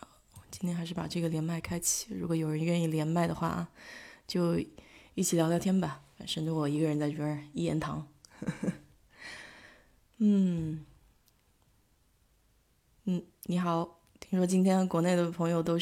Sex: female